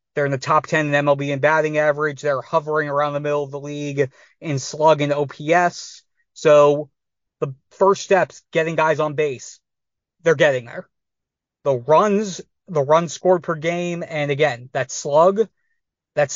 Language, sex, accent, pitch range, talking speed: English, male, American, 140-165 Hz, 165 wpm